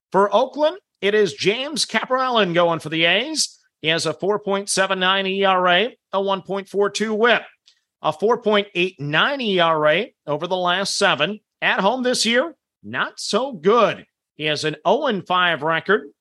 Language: English